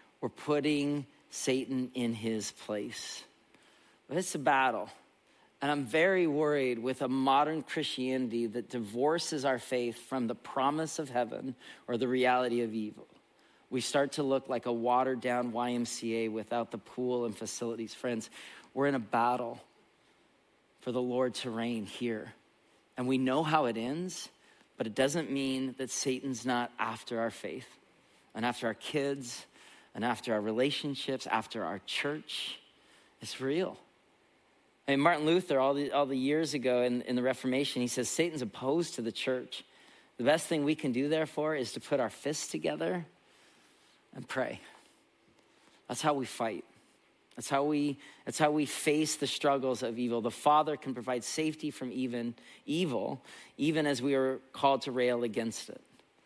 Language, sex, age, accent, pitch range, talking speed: English, male, 40-59, American, 120-145 Hz, 165 wpm